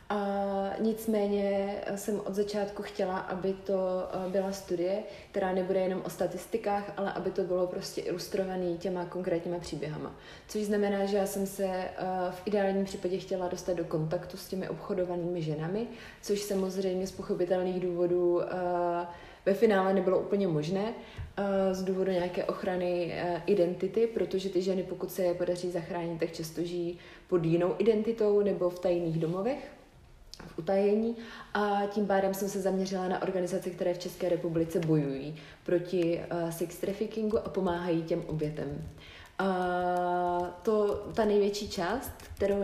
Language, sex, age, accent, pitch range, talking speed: Czech, female, 30-49, native, 175-195 Hz, 145 wpm